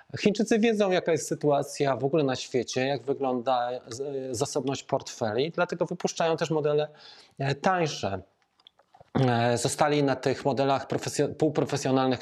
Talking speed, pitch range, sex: 115 wpm, 120-155 Hz, male